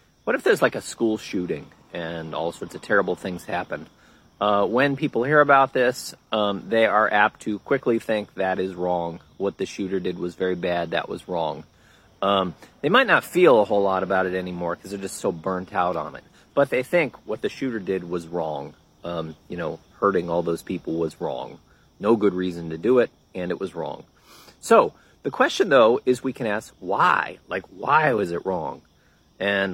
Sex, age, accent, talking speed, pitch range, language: male, 30-49, American, 205 wpm, 90-115 Hz, English